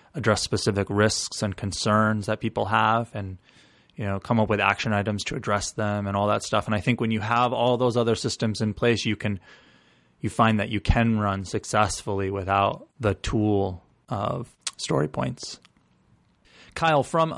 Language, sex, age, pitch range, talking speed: English, male, 20-39, 105-120 Hz, 180 wpm